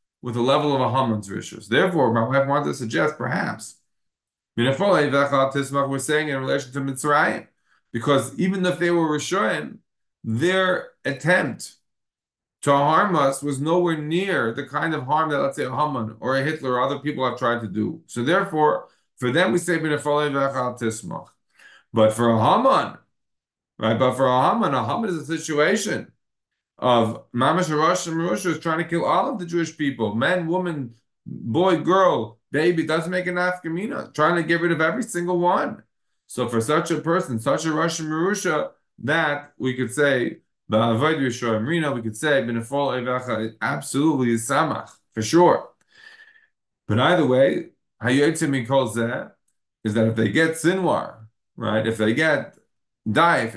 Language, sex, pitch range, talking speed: English, male, 125-165 Hz, 160 wpm